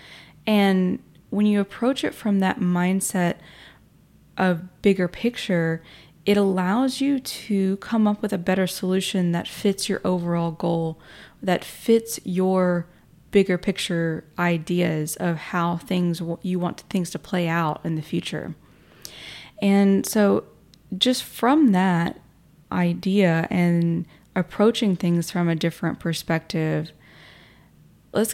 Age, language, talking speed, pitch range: 20-39, English, 125 wpm, 170-200 Hz